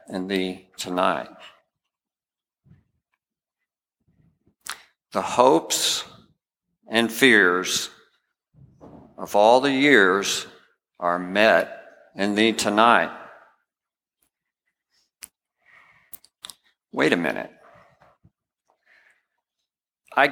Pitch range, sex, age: 110-145 Hz, male, 50-69